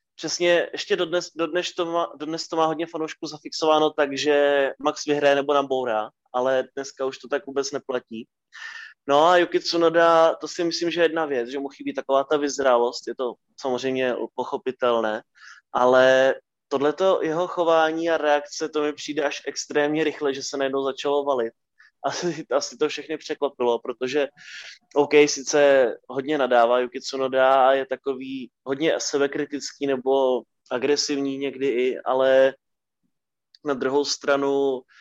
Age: 20-39